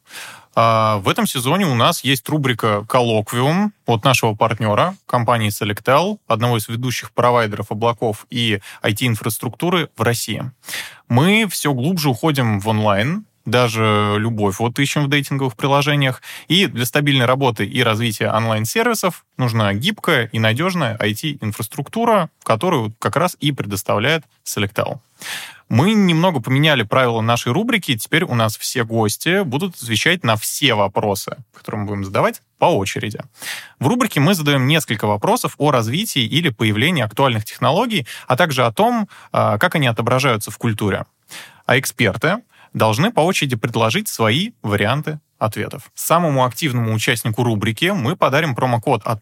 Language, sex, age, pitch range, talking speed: Russian, male, 20-39, 110-150 Hz, 140 wpm